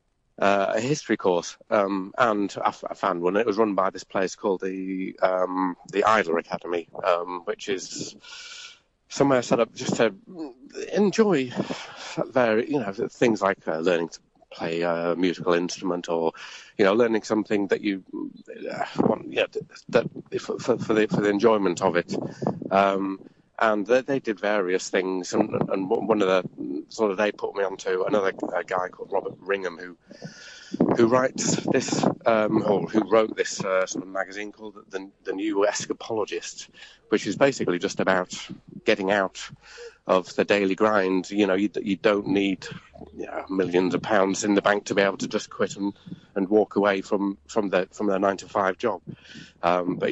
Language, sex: English, male